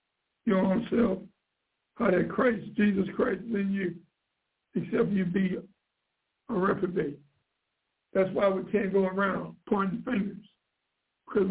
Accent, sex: American, male